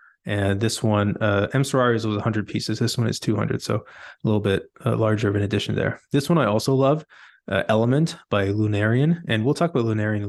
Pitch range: 105-120 Hz